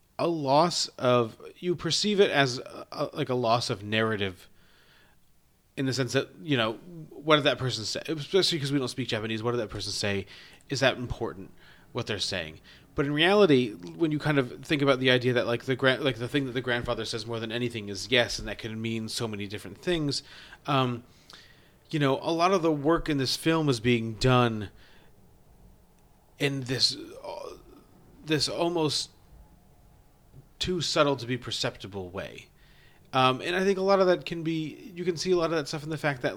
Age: 30-49